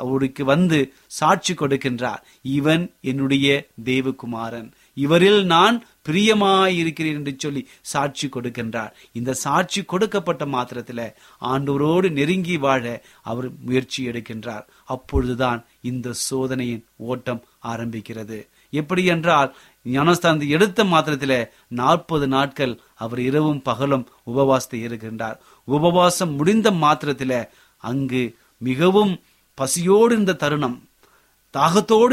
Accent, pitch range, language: native, 125-170 Hz, Tamil